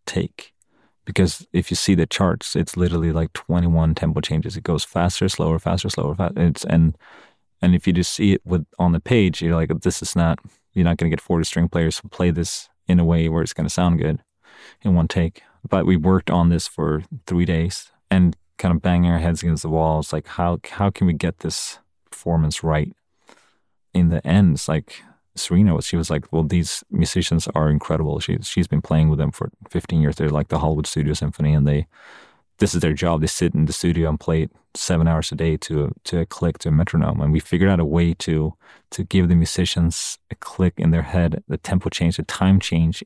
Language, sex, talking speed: English, male, 220 wpm